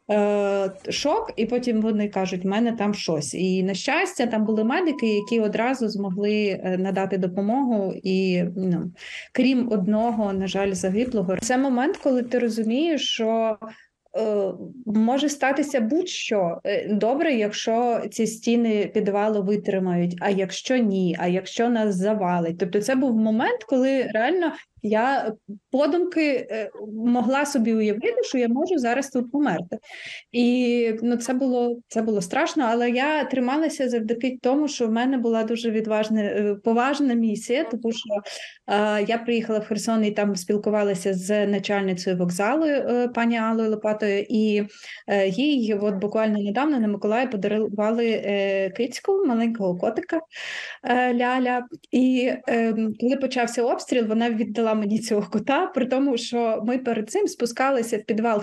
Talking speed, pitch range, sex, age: 140 wpm, 205-250 Hz, female, 20-39